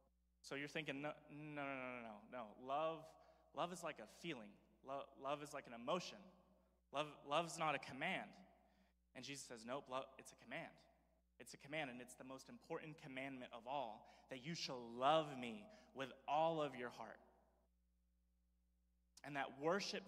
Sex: male